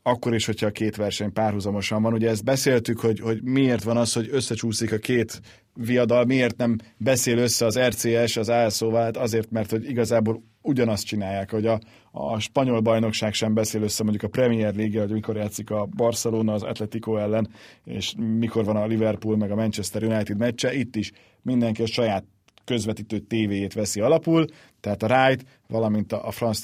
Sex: male